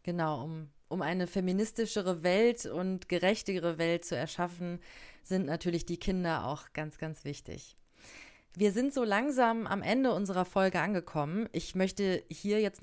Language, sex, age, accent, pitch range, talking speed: German, female, 30-49, German, 160-210 Hz, 150 wpm